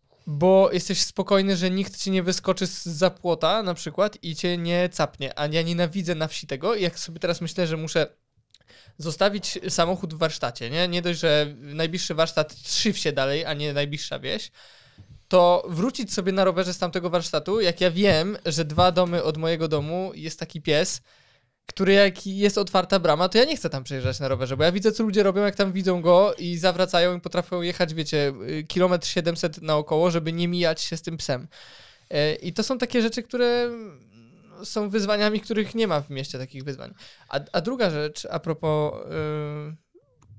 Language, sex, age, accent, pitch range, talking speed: Polish, male, 20-39, native, 160-190 Hz, 185 wpm